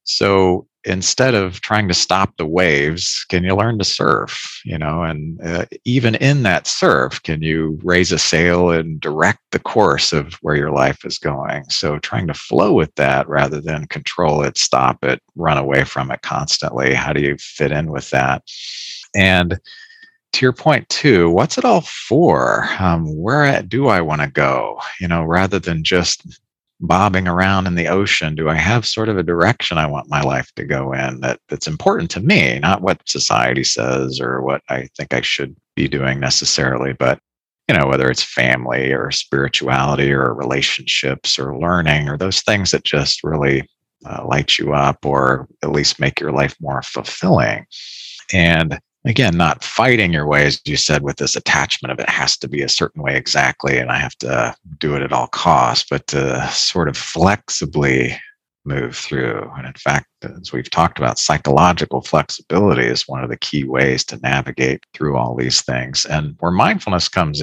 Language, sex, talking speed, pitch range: English, male, 185 wpm, 65-90 Hz